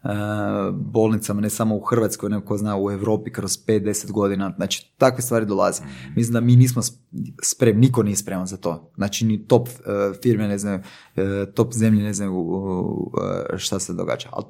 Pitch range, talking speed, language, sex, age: 100-120 Hz, 165 wpm, Croatian, male, 20-39